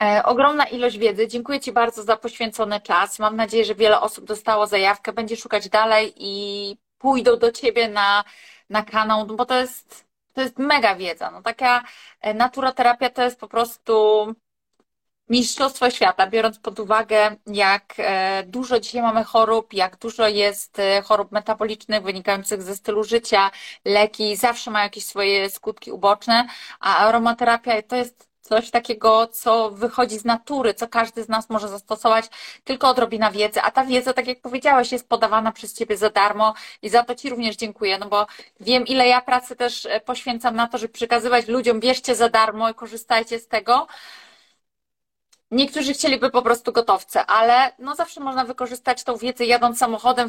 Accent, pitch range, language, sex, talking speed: native, 215-245 Hz, Polish, female, 165 wpm